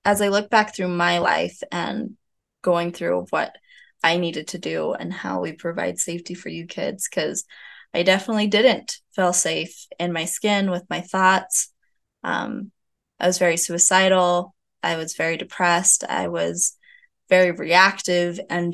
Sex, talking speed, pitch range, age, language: female, 155 wpm, 175-205 Hz, 20-39, English